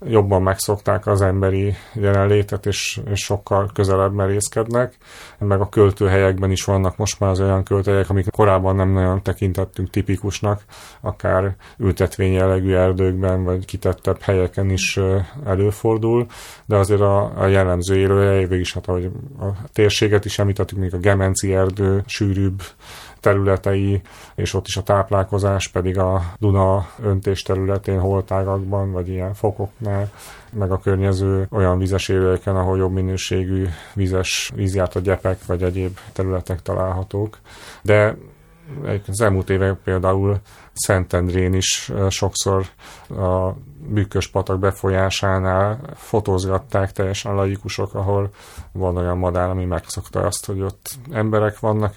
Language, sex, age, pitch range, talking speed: Hungarian, male, 30-49, 95-105 Hz, 130 wpm